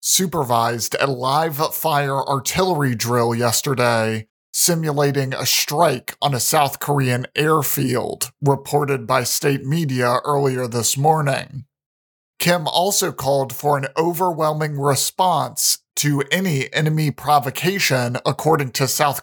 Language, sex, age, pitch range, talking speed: English, male, 40-59, 130-155 Hz, 110 wpm